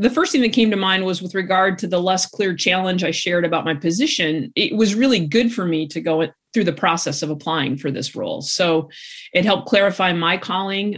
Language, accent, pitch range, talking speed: English, American, 160-195 Hz, 230 wpm